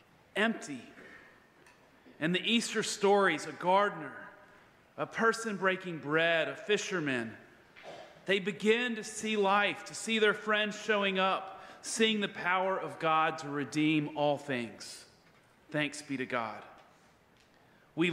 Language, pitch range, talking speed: English, 145-195 Hz, 125 wpm